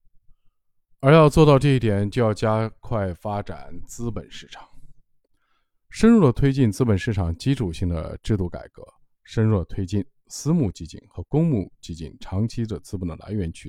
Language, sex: Chinese, male